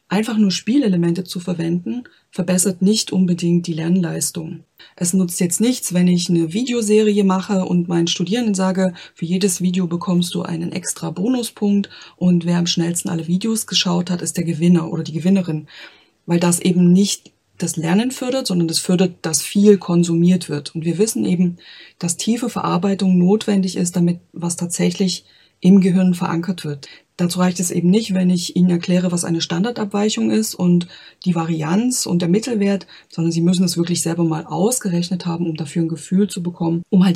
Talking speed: 180 wpm